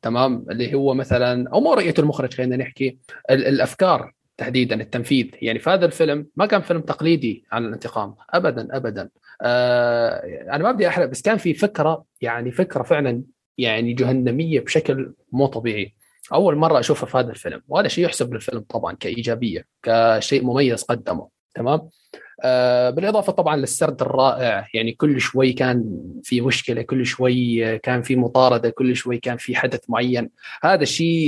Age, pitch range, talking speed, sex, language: 30-49, 120-145 Hz, 155 wpm, male, Arabic